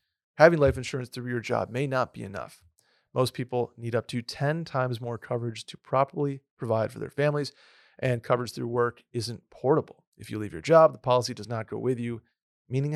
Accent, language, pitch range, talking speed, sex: American, English, 115-145 Hz, 205 wpm, male